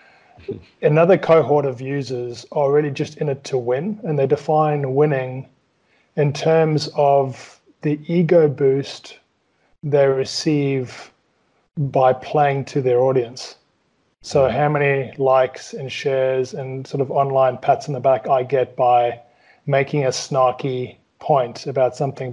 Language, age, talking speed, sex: English, 30-49, 140 wpm, male